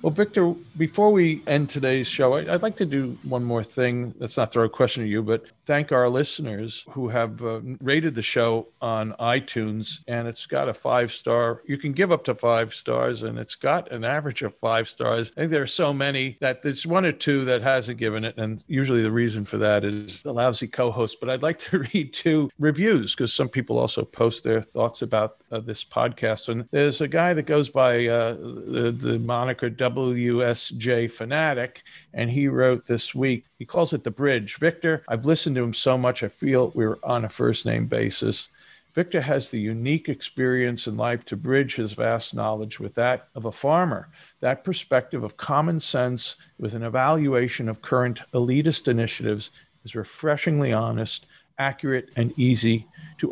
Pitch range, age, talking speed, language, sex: 115-145 Hz, 50-69, 190 wpm, English, male